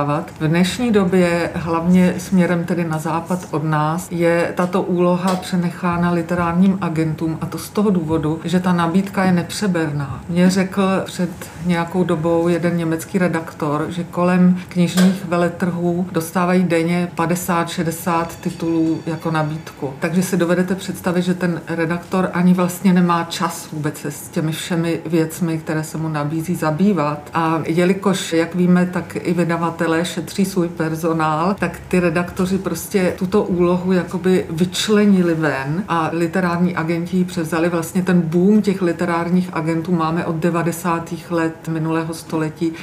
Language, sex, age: Czech, female, 40-59